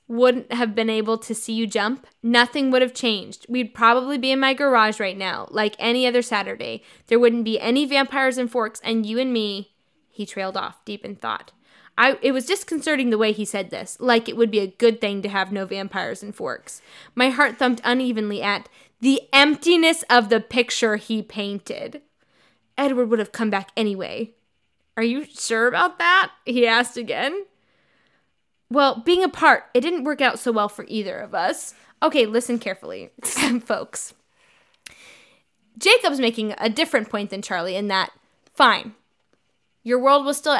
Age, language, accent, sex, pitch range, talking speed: 10-29, English, American, female, 215-260 Hz, 175 wpm